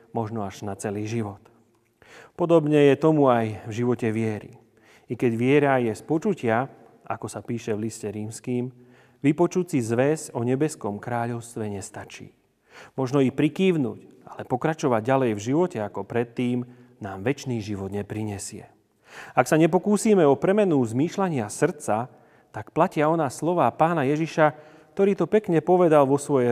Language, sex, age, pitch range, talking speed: Slovak, male, 40-59, 110-145 Hz, 145 wpm